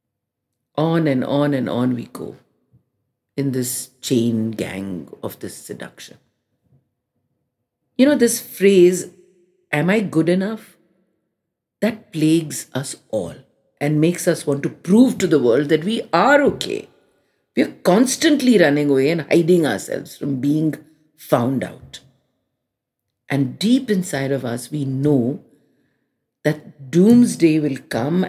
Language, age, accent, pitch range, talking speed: English, 50-69, Indian, 130-185 Hz, 130 wpm